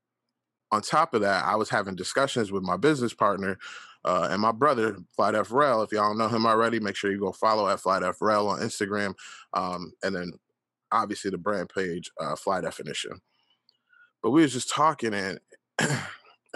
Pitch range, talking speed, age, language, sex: 100-125 Hz, 175 wpm, 20-39, English, male